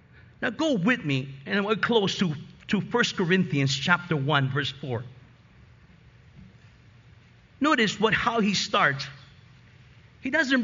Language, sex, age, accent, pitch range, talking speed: English, male, 50-69, American, 140-220 Hz, 125 wpm